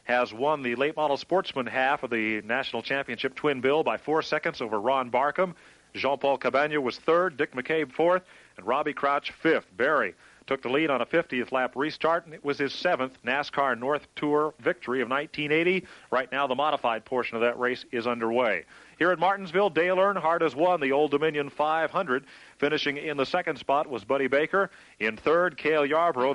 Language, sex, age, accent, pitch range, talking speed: English, male, 40-59, American, 125-160 Hz, 190 wpm